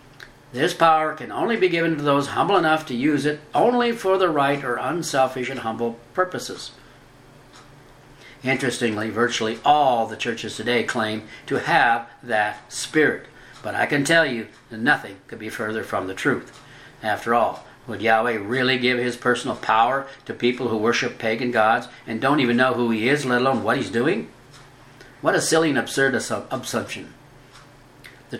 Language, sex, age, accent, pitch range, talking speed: English, male, 60-79, American, 120-145 Hz, 170 wpm